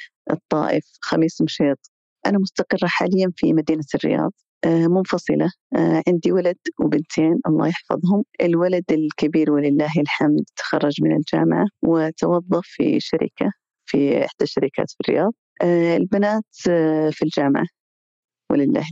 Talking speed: 110 wpm